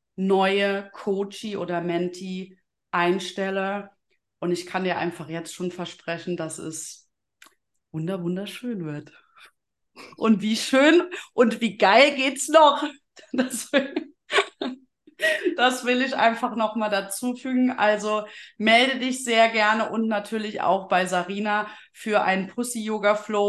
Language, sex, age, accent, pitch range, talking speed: German, female, 30-49, German, 180-225 Hz, 115 wpm